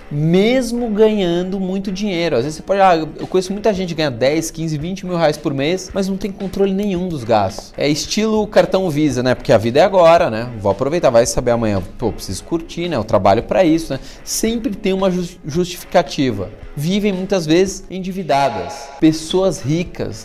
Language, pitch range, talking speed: Portuguese, 145-195 Hz, 190 wpm